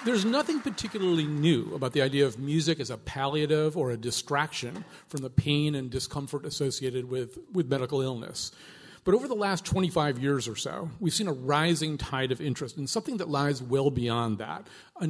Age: 40-59